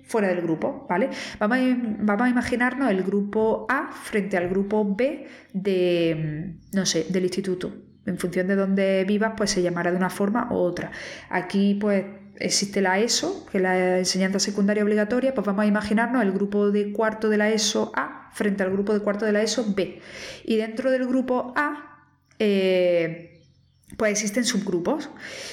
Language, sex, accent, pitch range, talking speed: Spanish, female, Spanish, 185-220 Hz, 175 wpm